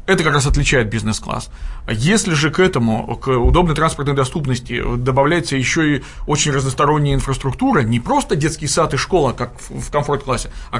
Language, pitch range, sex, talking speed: Russian, 125-150 Hz, male, 165 wpm